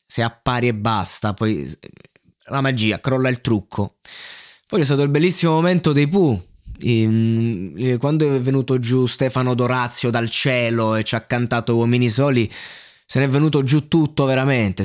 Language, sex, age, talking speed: Italian, male, 20-39, 160 wpm